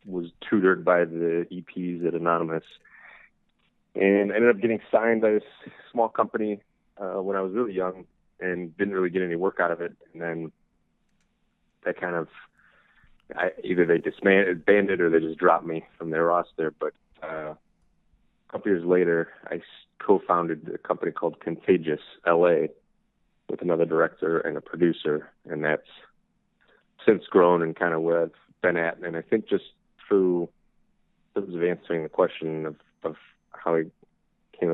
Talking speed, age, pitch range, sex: 160 wpm, 30-49, 80-95 Hz, male